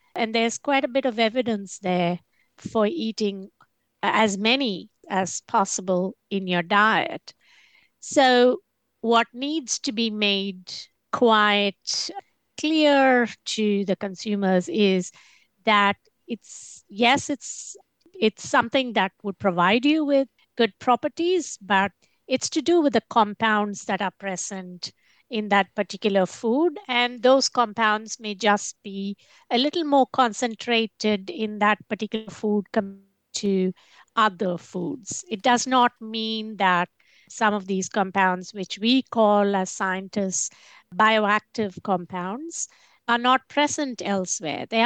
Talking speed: 125 wpm